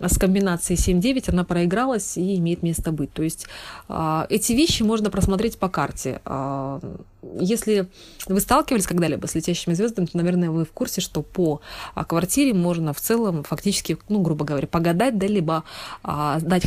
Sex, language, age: female, Russian, 20-39